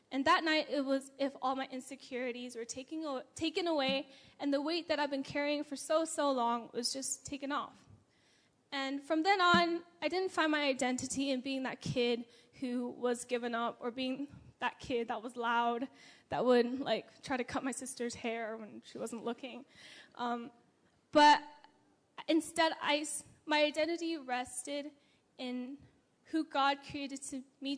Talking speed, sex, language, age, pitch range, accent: 160 wpm, female, English, 10-29, 245-290 Hz, American